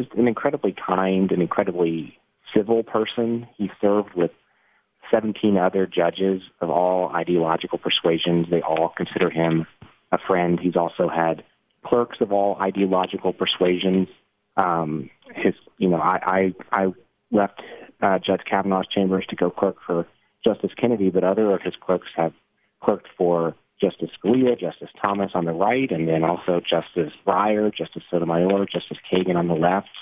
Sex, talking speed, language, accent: male, 150 wpm, English, American